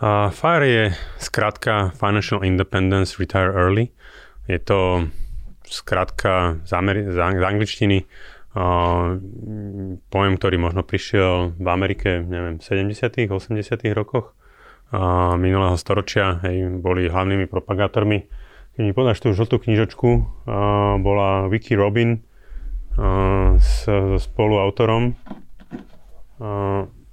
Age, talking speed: 30-49, 115 wpm